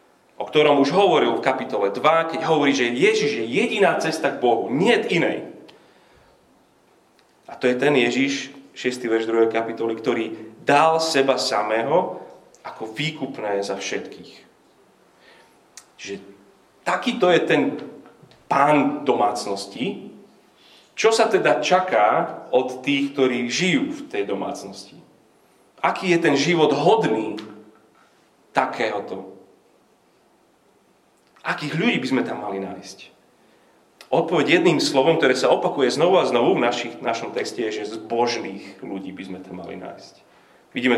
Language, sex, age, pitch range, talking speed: Slovak, male, 30-49, 110-150 Hz, 135 wpm